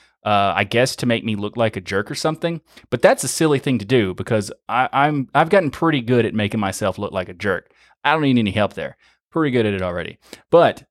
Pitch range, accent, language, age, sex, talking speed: 100-120 Hz, American, English, 30-49, male, 250 wpm